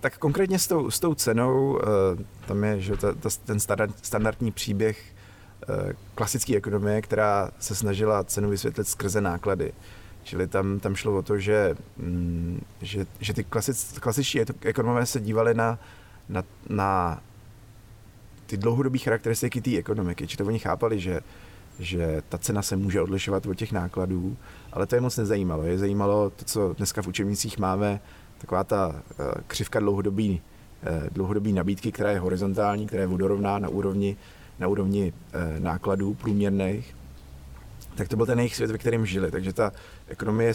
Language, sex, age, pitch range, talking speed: Slovak, male, 30-49, 95-110 Hz, 150 wpm